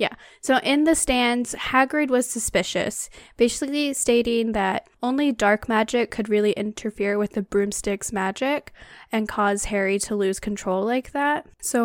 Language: English